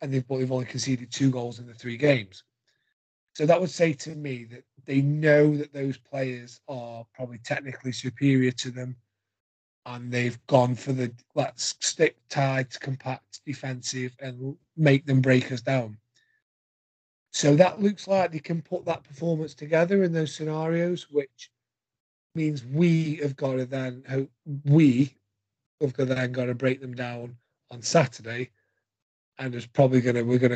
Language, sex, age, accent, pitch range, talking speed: English, male, 30-49, British, 125-145 Hz, 165 wpm